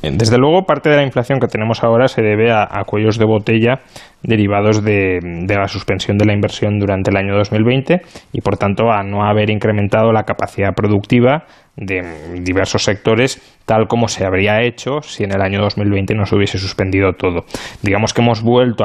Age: 20-39